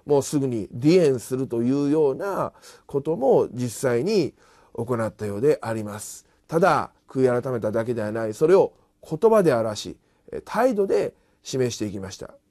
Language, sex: Japanese, male